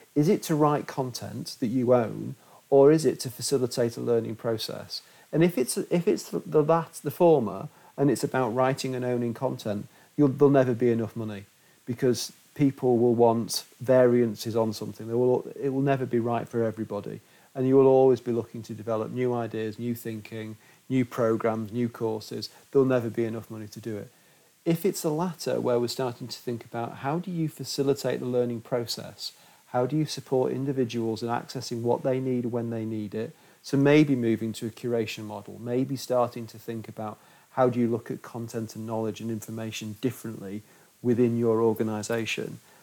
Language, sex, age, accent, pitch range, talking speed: English, male, 40-59, British, 115-135 Hz, 190 wpm